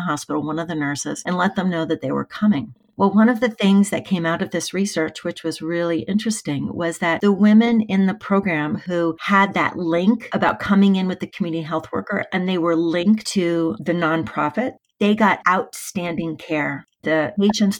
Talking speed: 200 wpm